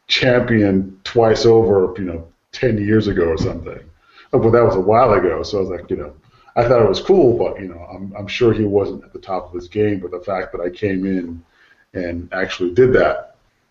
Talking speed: 230 wpm